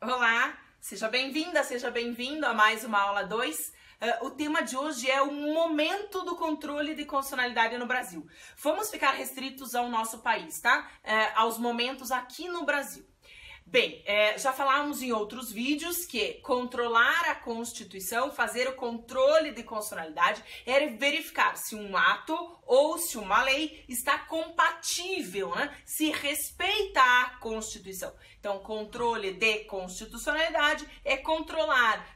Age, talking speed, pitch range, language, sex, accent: 30-49, 135 wpm, 240-310 Hz, Portuguese, female, Brazilian